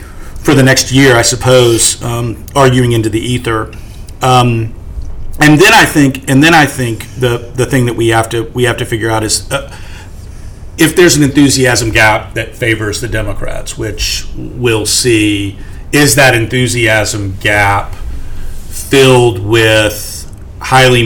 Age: 40-59